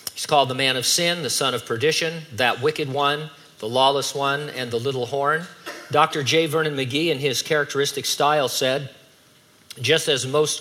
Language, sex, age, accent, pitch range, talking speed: English, male, 50-69, American, 130-155 Hz, 180 wpm